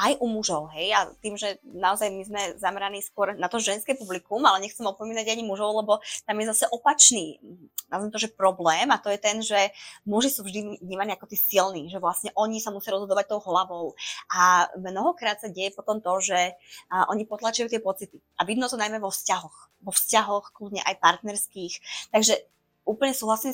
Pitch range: 190-225 Hz